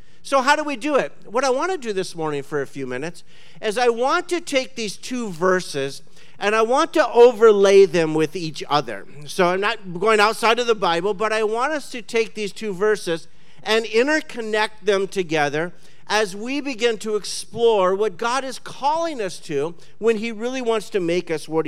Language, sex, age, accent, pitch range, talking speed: English, male, 50-69, American, 165-240 Hz, 205 wpm